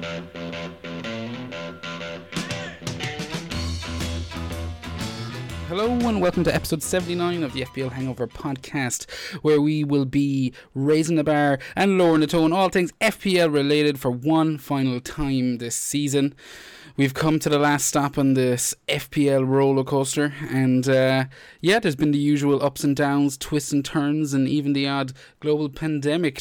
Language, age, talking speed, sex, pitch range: English, 20-39, 140 wpm, male, 120-150 Hz